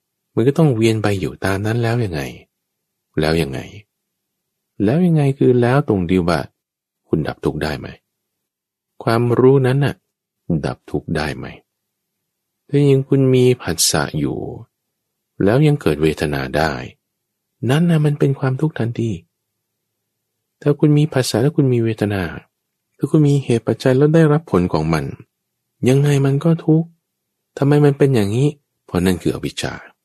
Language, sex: English, male